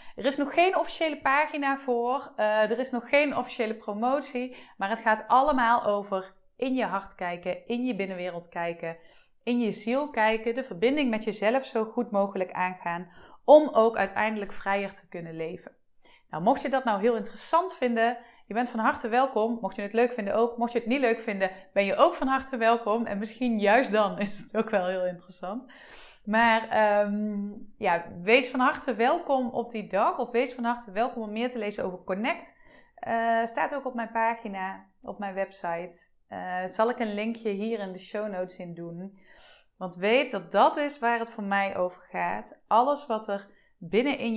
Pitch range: 190-245 Hz